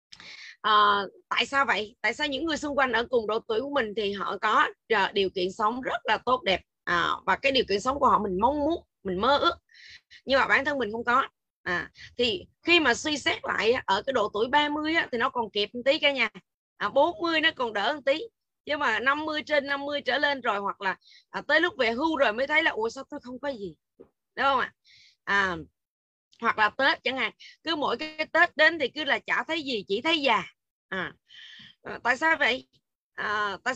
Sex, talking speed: female, 230 wpm